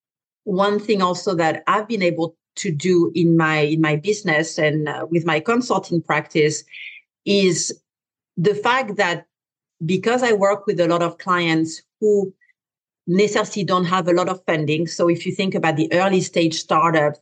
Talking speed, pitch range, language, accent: 170 wpm, 160-185 Hz, English, French